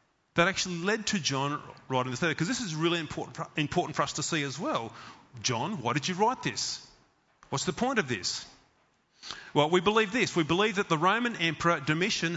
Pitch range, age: 140-185 Hz, 30-49